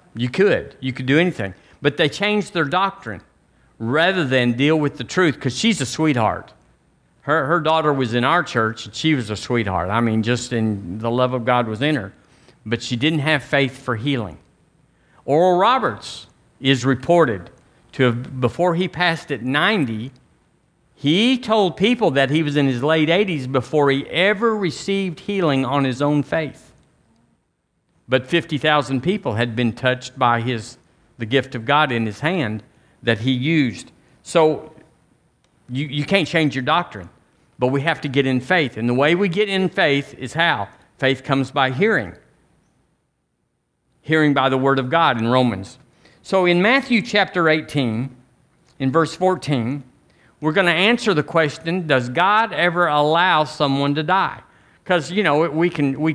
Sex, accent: male, American